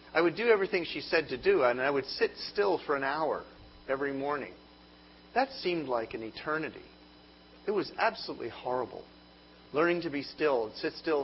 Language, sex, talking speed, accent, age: English, male, 175 wpm, American, 40-59